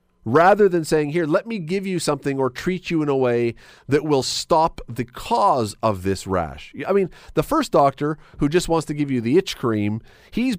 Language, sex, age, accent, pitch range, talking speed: English, male, 40-59, American, 115-165 Hz, 215 wpm